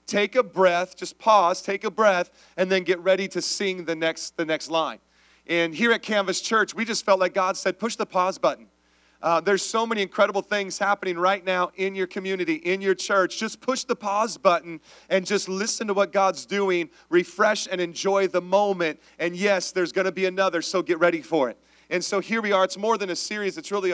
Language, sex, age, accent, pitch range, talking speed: English, male, 40-59, American, 165-200 Hz, 225 wpm